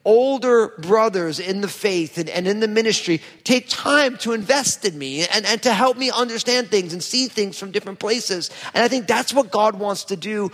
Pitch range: 200-250 Hz